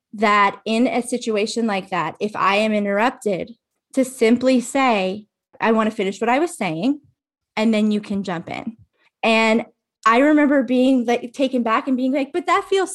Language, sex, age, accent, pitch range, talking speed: English, female, 20-39, American, 195-240 Hz, 185 wpm